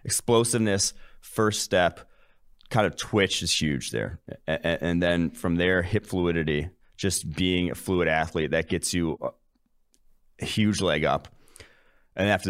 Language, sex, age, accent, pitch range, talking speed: English, male, 30-49, American, 75-90 Hz, 140 wpm